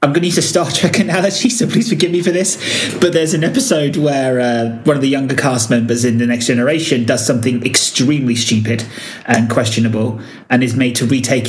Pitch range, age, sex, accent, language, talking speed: 120-140 Hz, 30-49, male, British, English, 215 wpm